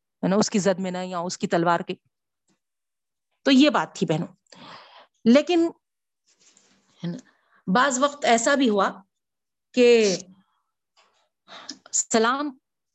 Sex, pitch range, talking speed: female, 185-255 Hz, 105 wpm